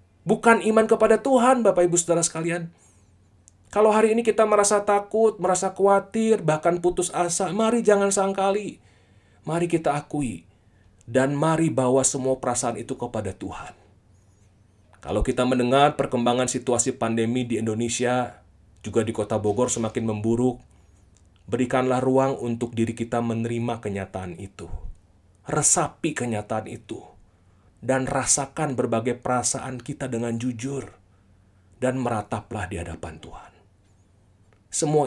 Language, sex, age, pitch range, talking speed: Indonesian, male, 30-49, 100-145 Hz, 120 wpm